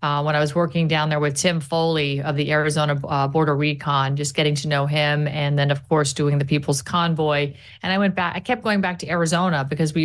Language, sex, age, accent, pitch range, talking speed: English, female, 40-59, American, 150-175 Hz, 245 wpm